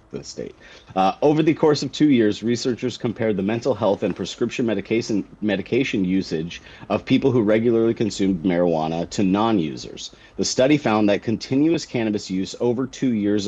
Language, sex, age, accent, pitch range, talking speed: English, male, 30-49, American, 90-115 Hz, 165 wpm